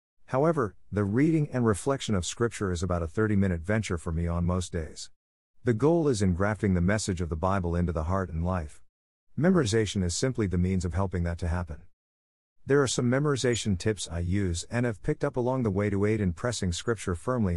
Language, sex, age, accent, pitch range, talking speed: English, male, 50-69, American, 85-110 Hz, 210 wpm